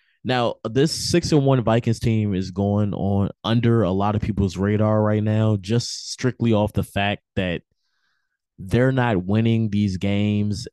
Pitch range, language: 95-110 Hz, English